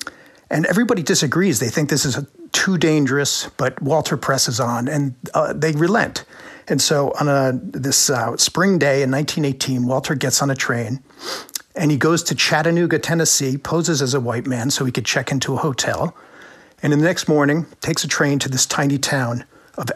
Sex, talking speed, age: male, 190 wpm, 50-69